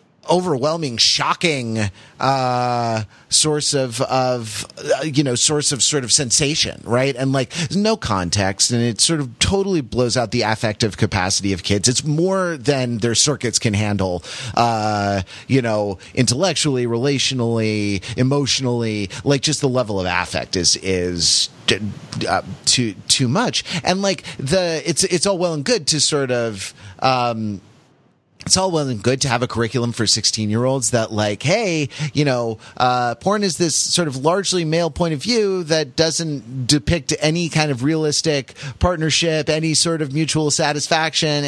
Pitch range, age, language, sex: 115-155 Hz, 30-49, English, male